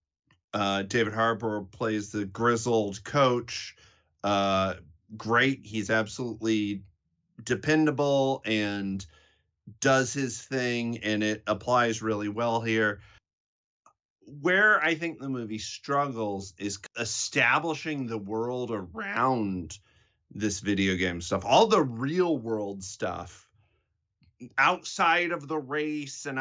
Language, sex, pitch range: English, male, 100-135 Hz